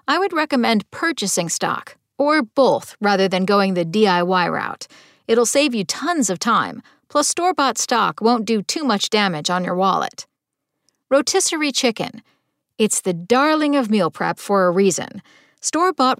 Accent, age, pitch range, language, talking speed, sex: American, 50-69, 190-275 Hz, English, 155 wpm, female